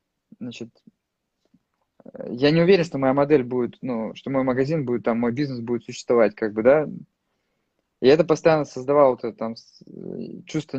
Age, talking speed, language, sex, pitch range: 20-39, 150 wpm, Russian, male, 130-180 Hz